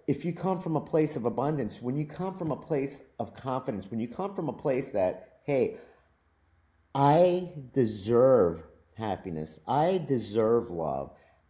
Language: English